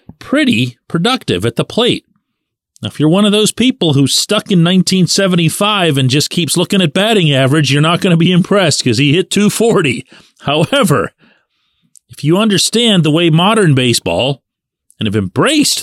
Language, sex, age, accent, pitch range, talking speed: English, male, 40-59, American, 120-175 Hz, 165 wpm